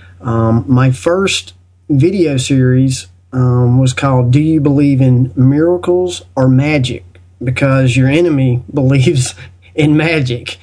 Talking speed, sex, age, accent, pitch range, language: 120 wpm, male, 40-59, American, 120-155 Hz, English